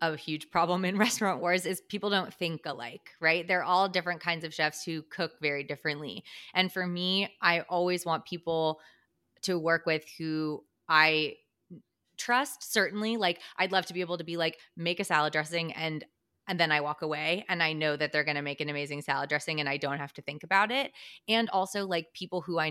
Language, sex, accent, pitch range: English, female, American, 155-185 Hz